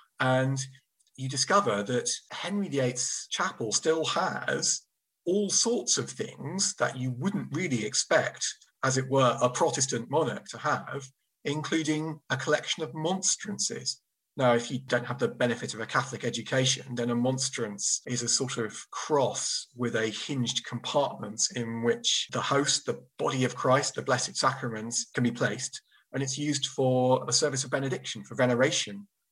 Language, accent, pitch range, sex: English, British, 120-140 Hz, male